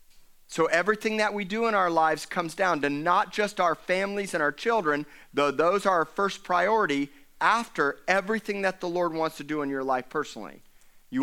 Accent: American